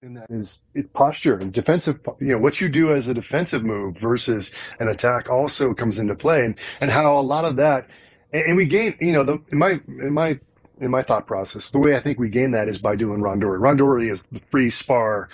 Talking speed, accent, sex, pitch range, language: 225 wpm, American, male, 115-145 Hz, English